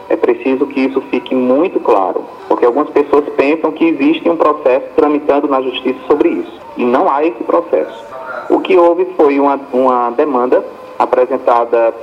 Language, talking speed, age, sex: English, 165 wpm, 30-49, male